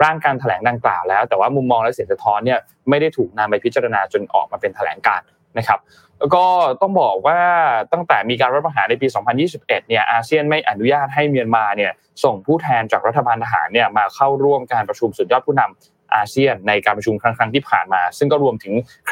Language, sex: Thai, male